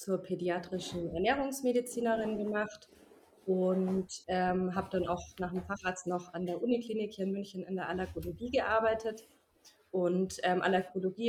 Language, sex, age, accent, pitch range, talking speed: German, female, 20-39, German, 190-230 Hz, 140 wpm